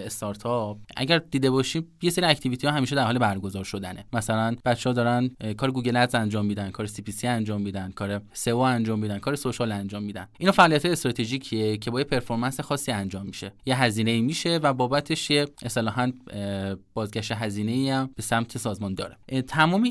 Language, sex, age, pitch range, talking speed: Persian, male, 20-39, 110-140 Hz, 185 wpm